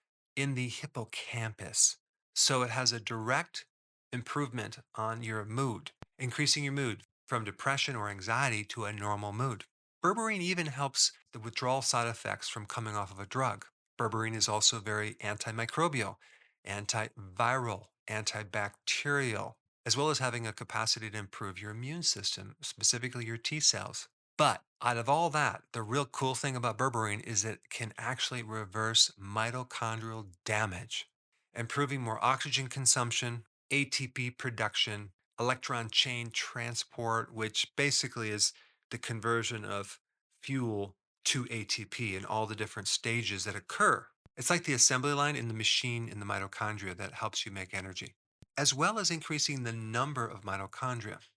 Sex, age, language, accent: male, 40-59, English, American